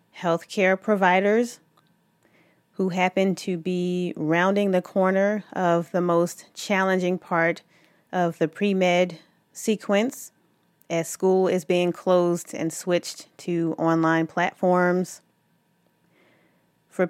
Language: English